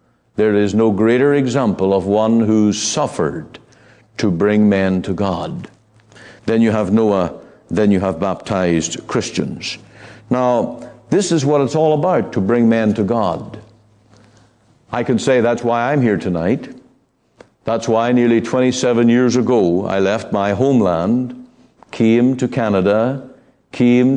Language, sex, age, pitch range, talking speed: English, male, 60-79, 105-125 Hz, 140 wpm